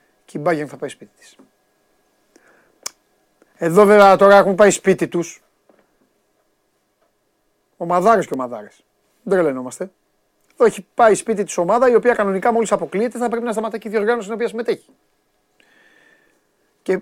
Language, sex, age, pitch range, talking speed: Greek, male, 30-49, 140-210 Hz, 140 wpm